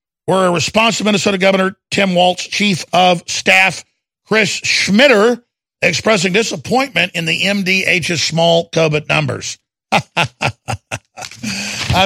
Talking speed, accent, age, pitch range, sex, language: 110 wpm, American, 50-69, 170-250 Hz, male, English